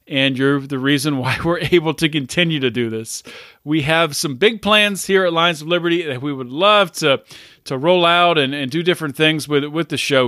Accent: American